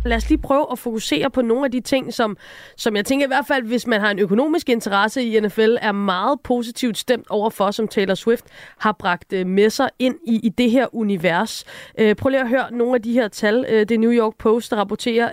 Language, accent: Danish, native